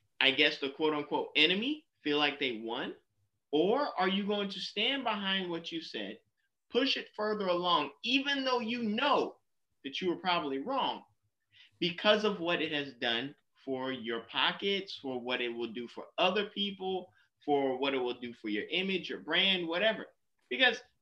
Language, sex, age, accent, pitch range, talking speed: English, male, 30-49, American, 125-175 Hz, 175 wpm